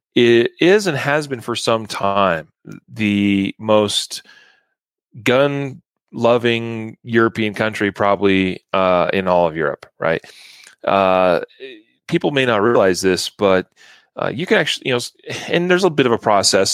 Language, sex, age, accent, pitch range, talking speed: English, male, 30-49, American, 100-120 Hz, 145 wpm